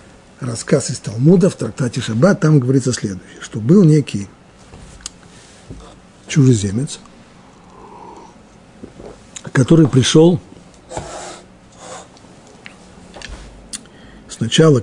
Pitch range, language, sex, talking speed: 115-165 Hz, Russian, male, 65 wpm